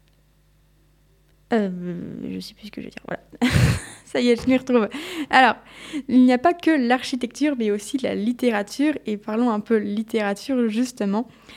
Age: 20-39